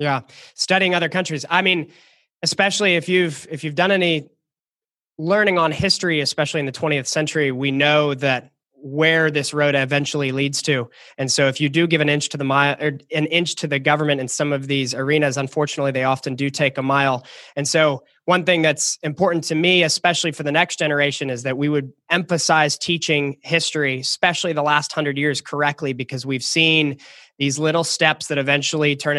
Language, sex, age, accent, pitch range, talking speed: English, male, 20-39, American, 145-165 Hz, 195 wpm